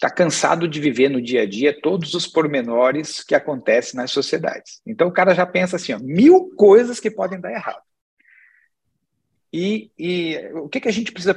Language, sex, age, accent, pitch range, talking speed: Portuguese, male, 50-69, Brazilian, 135-185 Hz, 185 wpm